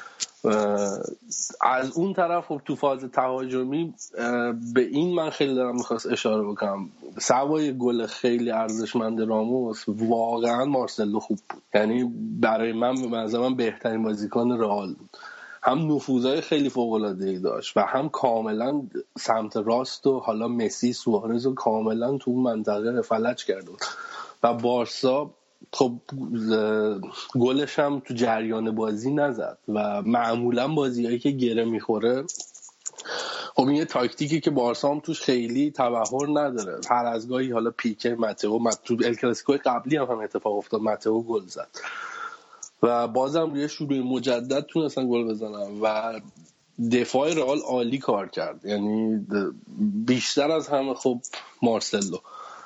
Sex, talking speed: male, 130 wpm